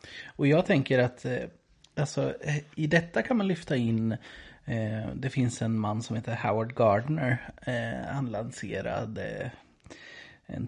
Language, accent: Swedish, native